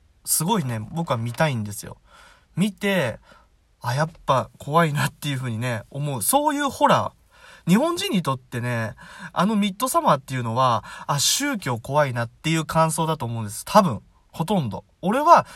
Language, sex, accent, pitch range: Japanese, male, native, 110-160 Hz